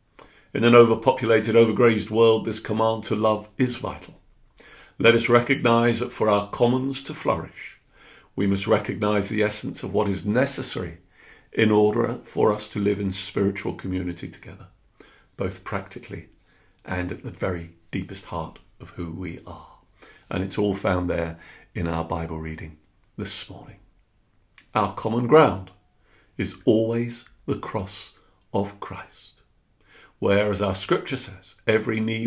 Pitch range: 95-120 Hz